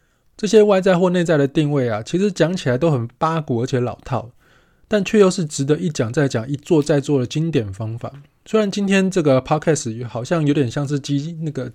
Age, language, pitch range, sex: 20-39, Chinese, 125-165 Hz, male